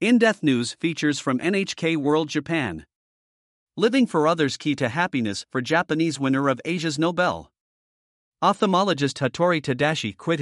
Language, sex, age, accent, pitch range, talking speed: English, male, 50-69, American, 130-170 Hz, 135 wpm